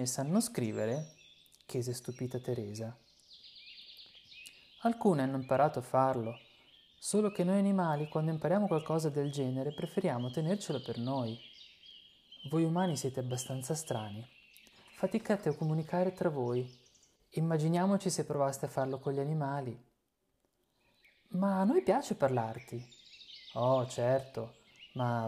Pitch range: 120-165 Hz